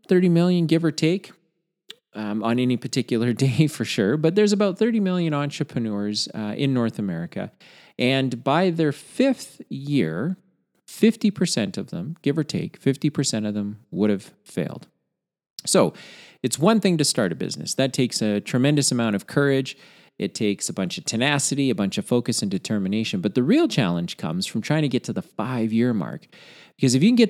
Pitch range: 105-155 Hz